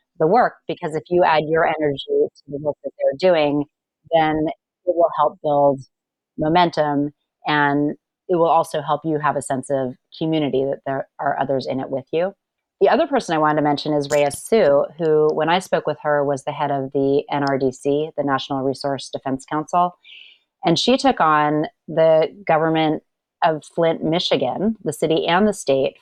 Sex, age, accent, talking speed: female, 30-49, American, 185 wpm